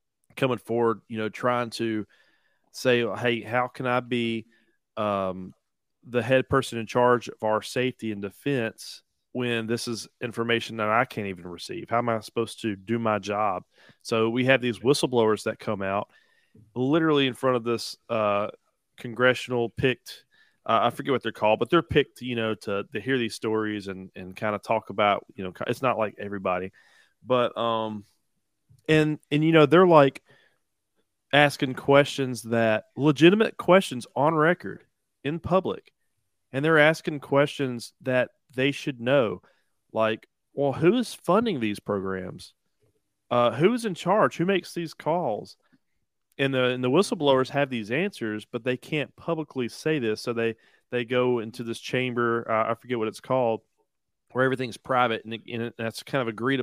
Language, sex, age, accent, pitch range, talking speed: English, male, 30-49, American, 110-135 Hz, 170 wpm